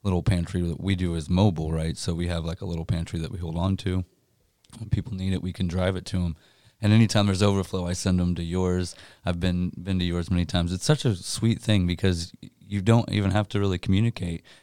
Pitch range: 85-100 Hz